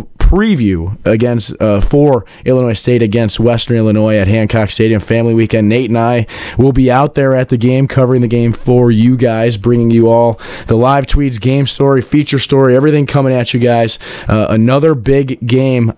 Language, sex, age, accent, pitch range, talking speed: English, male, 20-39, American, 110-130 Hz, 185 wpm